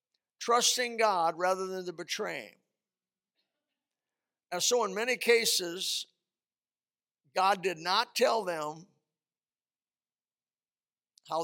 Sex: male